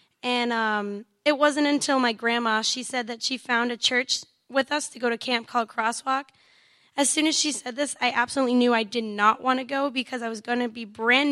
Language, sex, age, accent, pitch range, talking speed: English, female, 10-29, American, 230-265 Hz, 235 wpm